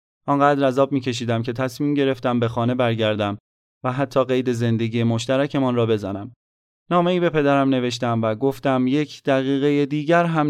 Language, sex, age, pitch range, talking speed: Persian, male, 30-49, 115-135 Hz, 155 wpm